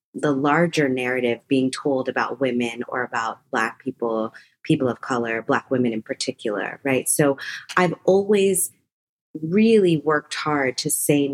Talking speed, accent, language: 145 wpm, American, English